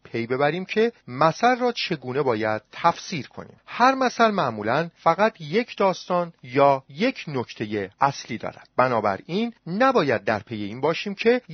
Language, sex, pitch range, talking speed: Persian, male, 130-210 Hz, 140 wpm